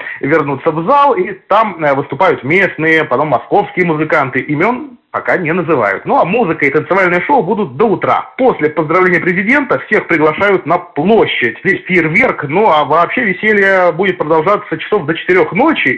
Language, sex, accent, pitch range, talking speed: Russian, male, native, 140-190 Hz, 160 wpm